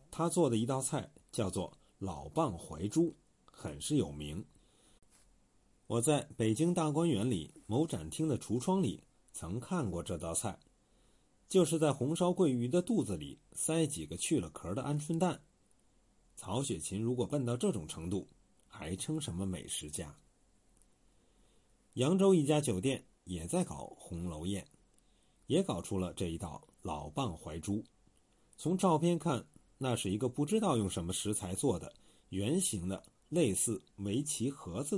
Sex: male